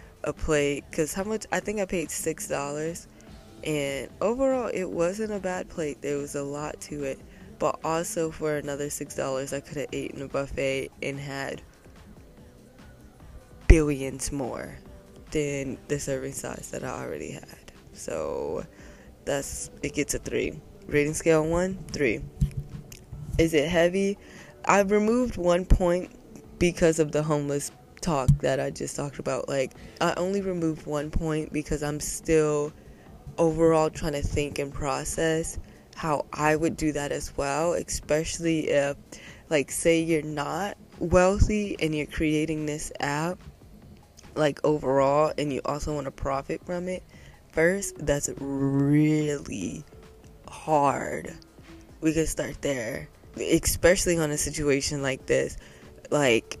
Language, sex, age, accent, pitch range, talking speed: English, female, 20-39, American, 140-165 Hz, 145 wpm